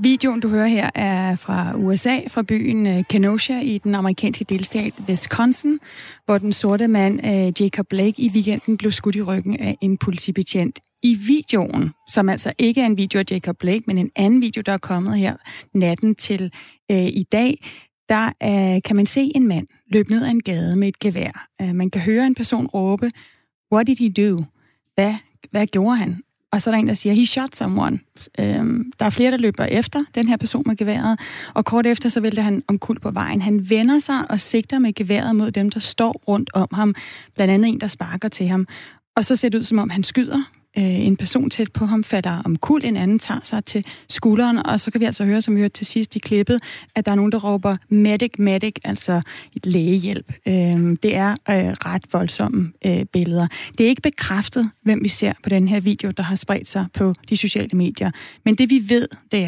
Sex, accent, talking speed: female, native, 215 wpm